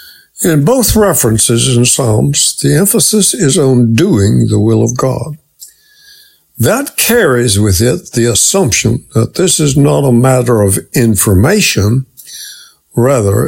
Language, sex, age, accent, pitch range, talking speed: English, male, 60-79, American, 115-165 Hz, 130 wpm